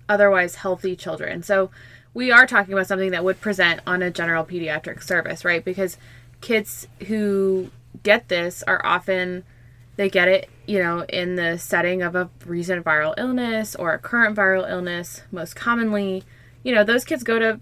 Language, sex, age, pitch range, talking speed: English, female, 20-39, 165-195 Hz, 175 wpm